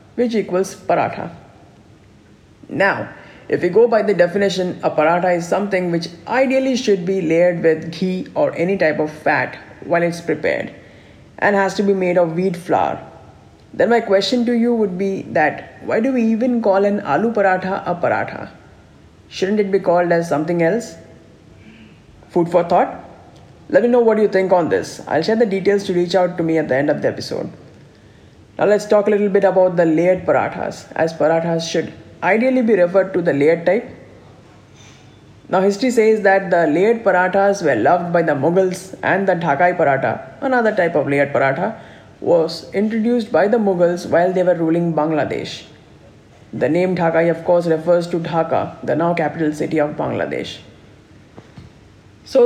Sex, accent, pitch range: female, Indian, 165-205 Hz